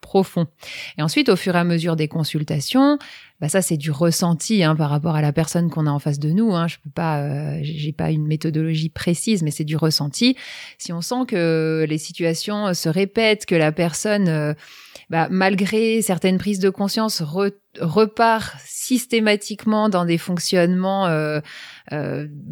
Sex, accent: female, French